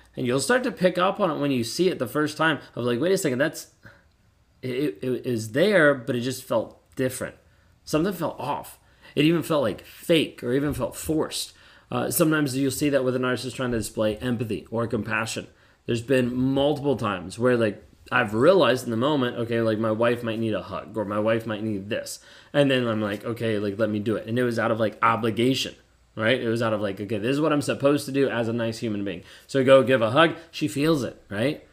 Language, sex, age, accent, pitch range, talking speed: English, male, 20-39, American, 110-140 Hz, 240 wpm